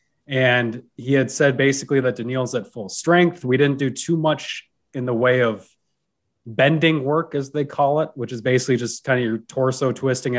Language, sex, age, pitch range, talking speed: English, male, 20-39, 120-150 Hz, 195 wpm